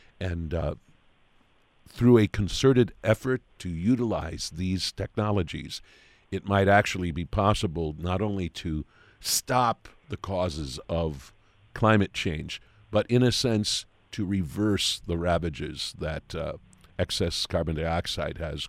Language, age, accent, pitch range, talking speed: English, 50-69, American, 80-105 Hz, 120 wpm